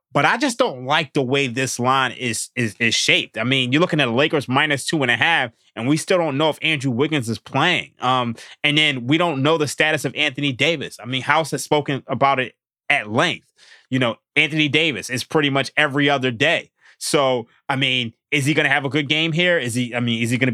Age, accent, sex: 20-39, American, male